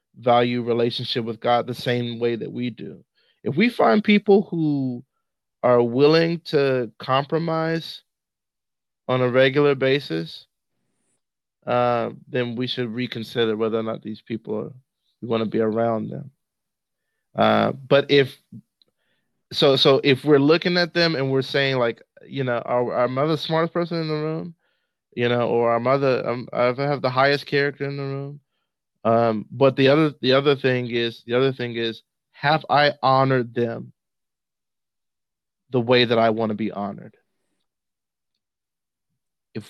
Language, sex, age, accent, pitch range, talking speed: English, male, 20-39, American, 115-140 Hz, 155 wpm